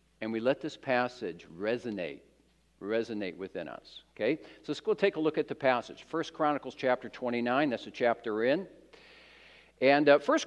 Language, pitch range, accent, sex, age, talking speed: English, 125-160 Hz, American, male, 50-69, 170 wpm